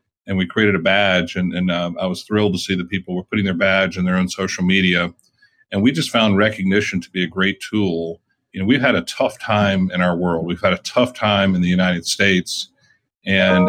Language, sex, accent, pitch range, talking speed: English, male, American, 95-110 Hz, 235 wpm